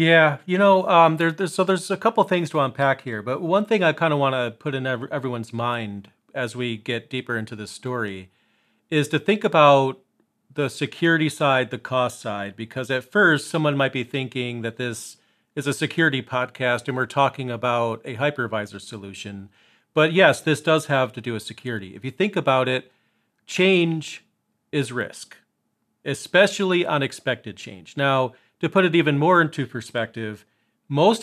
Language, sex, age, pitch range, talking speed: English, male, 40-59, 120-155 Hz, 180 wpm